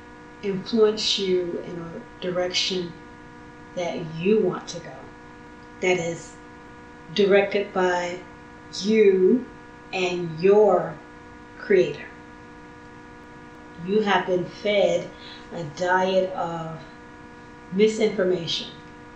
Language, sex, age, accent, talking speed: English, female, 30-49, American, 80 wpm